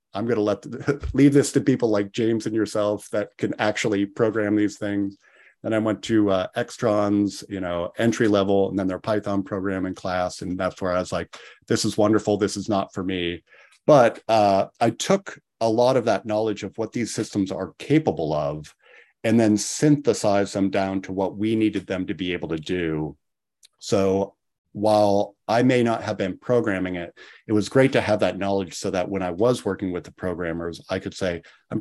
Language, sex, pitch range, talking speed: English, male, 90-110 Hz, 205 wpm